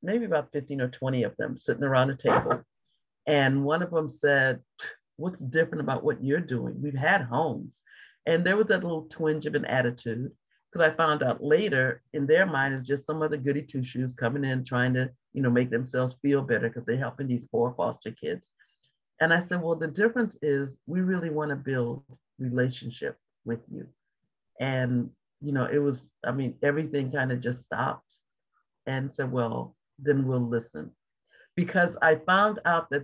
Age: 50-69